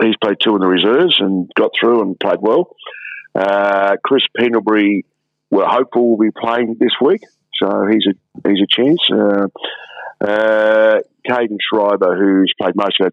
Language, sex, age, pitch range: English, male, 50-69, 90-110 Hz